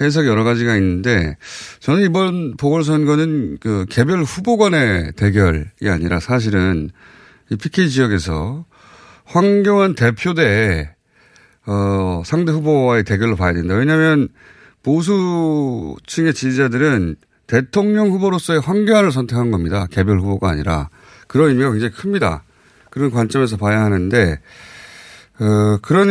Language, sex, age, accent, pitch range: Korean, male, 30-49, native, 105-160 Hz